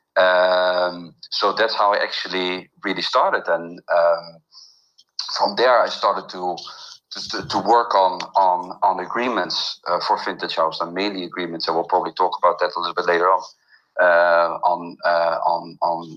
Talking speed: 165 wpm